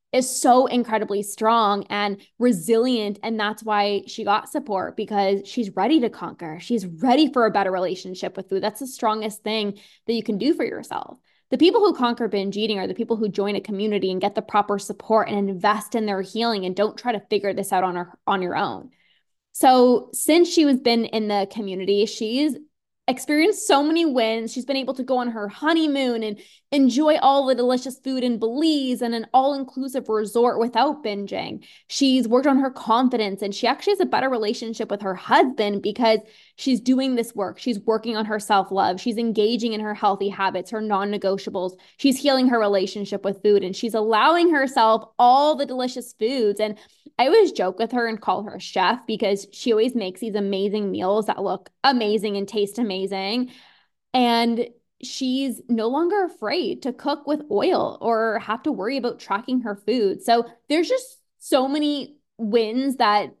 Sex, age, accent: female, 10-29, American